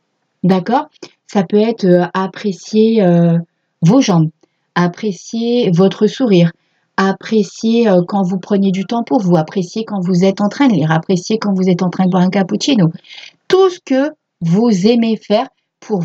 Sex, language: female, French